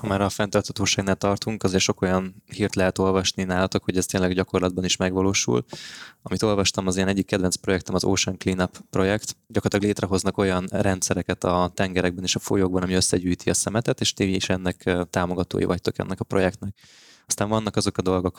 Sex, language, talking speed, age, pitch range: male, Hungarian, 185 wpm, 20-39, 90-105 Hz